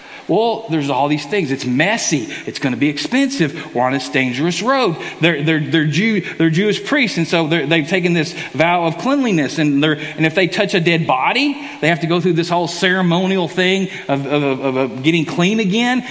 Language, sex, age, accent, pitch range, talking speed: English, male, 40-59, American, 150-220 Hz, 210 wpm